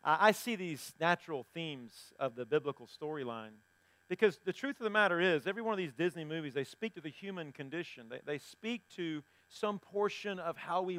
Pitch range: 145-225 Hz